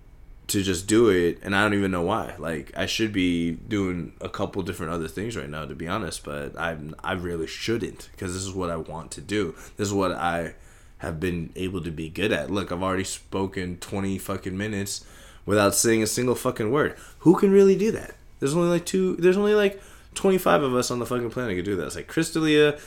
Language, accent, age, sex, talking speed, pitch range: English, American, 20-39, male, 230 wpm, 85-120 Hz